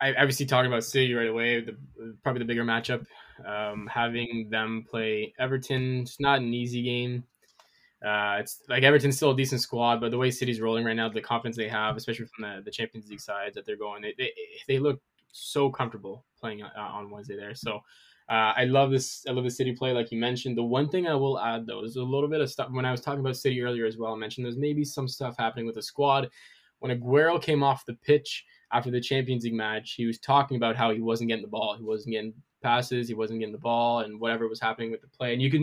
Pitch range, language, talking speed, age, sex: 115-135 Hz, English, 250 wpm, 10-29, male